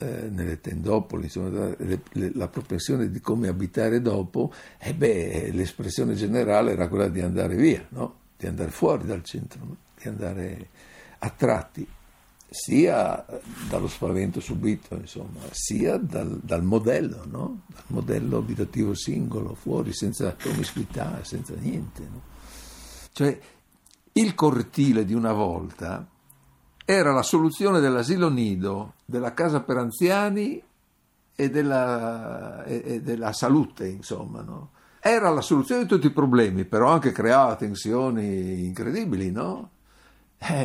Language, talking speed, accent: Italian, 120 wpm, native